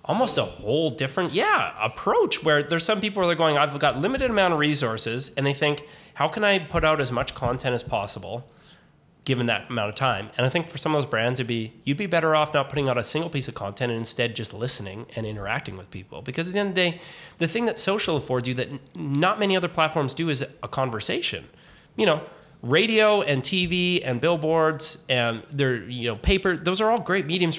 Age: 30-49